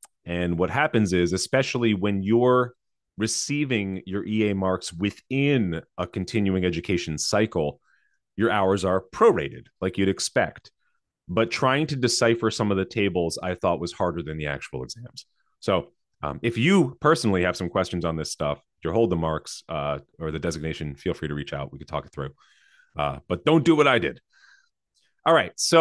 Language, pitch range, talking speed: English, 85-120 Hz, 180 wpm